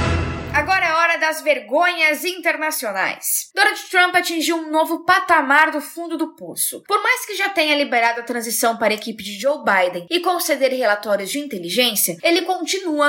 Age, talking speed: 10-29, 155 wpm